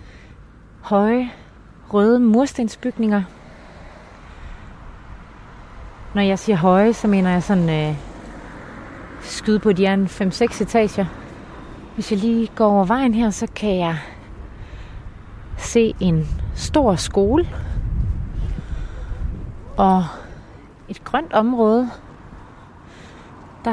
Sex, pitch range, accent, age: female, 165-230 Hz, native, 30-49